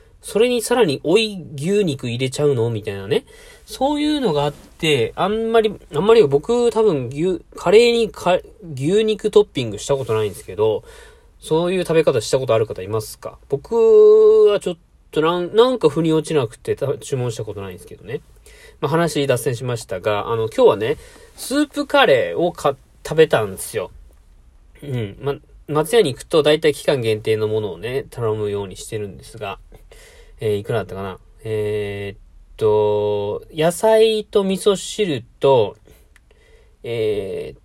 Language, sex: Japanese, male